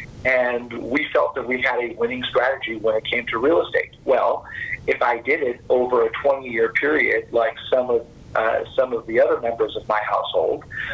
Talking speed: 195 wpm